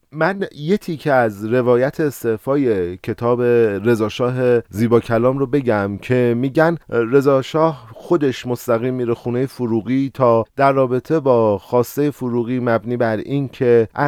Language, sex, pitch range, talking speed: Persian, male, 110-140 Hz, 125 wpm